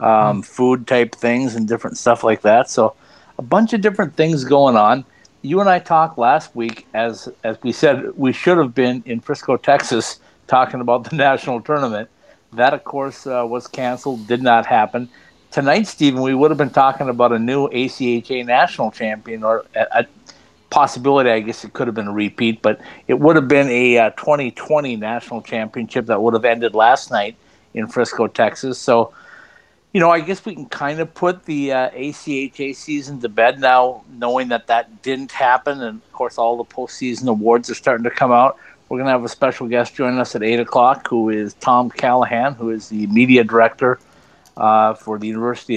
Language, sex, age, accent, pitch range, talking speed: English, male, 50-69, American, 115-135 Hz, 200 wpm